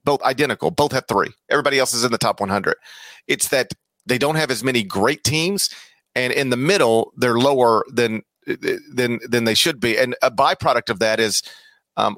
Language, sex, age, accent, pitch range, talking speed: English, male, 40-59, American, 115-140 Hz, 195 wpm